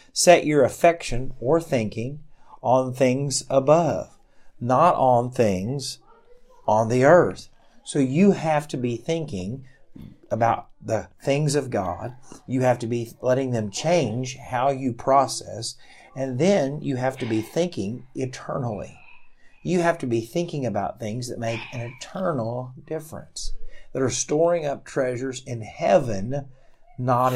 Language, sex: English, male